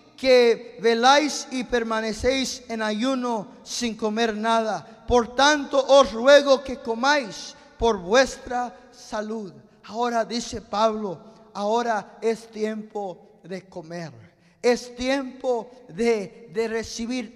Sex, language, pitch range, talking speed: male, English, 225-265 Hz, 105 wpm